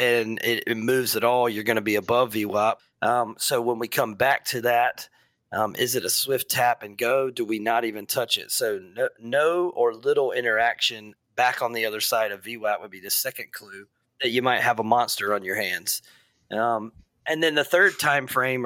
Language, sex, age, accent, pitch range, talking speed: English, male, 30-49, American, 115-145 Hz, 215 wpm